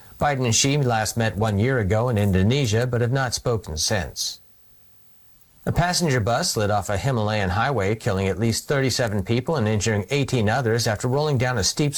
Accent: American